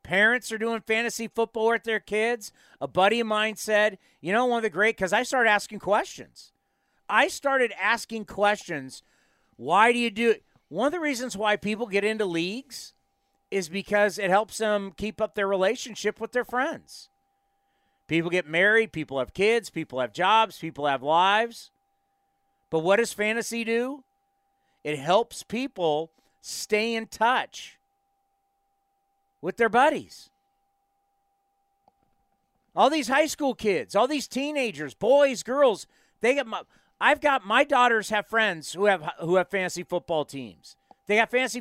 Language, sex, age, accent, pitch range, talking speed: English, male, 40-59, American, 195-265 Hz, 155 wpm